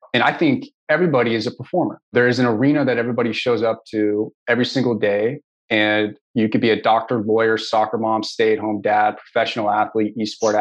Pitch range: 110-130 Hz